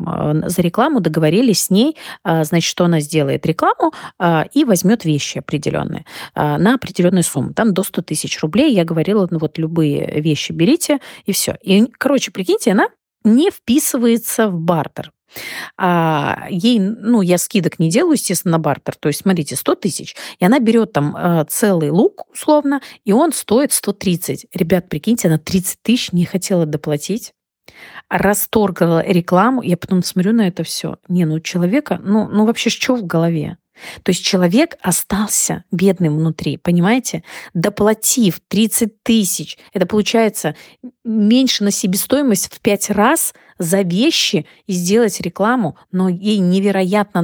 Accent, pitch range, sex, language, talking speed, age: native, 170-225 Hz, female, Russian, 145 wpm, 30-49